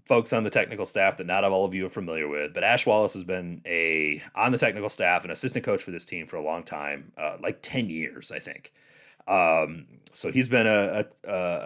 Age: 30-49